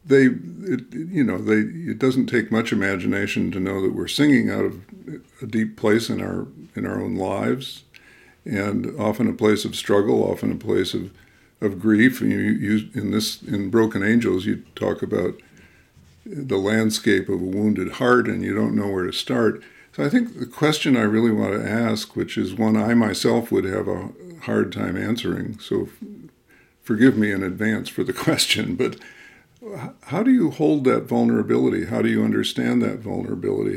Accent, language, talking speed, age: American, English, 185 wpm, 50-69